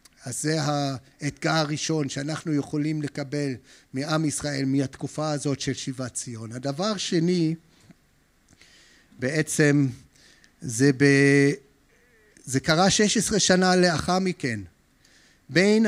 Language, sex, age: Hebrew, male, 50-69